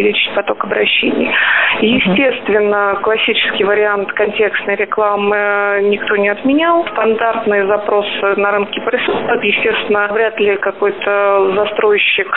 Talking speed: 100 wpm